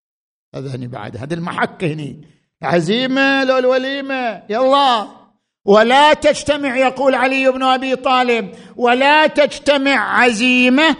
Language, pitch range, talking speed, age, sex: Arabic, 170-260 Hz, 100 wpm, 50-69, male